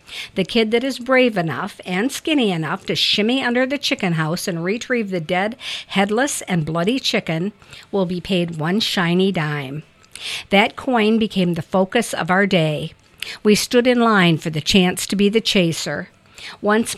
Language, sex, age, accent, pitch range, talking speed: English, female, 50-69, American, 175-220 Hz, 175 wpm